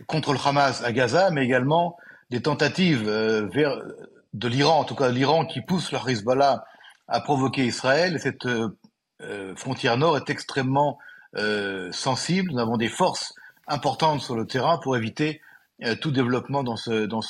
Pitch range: 120-150 Hz